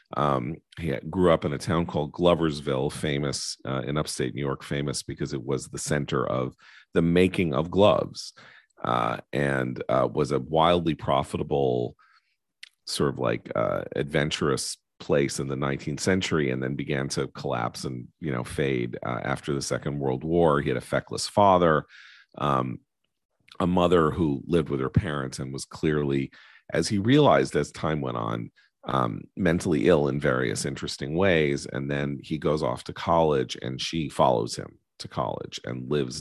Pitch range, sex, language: 65-85 Hz, male, English